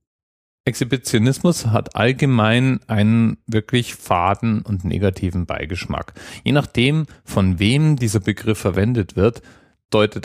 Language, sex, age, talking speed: German, male, 40-59, 105 wpm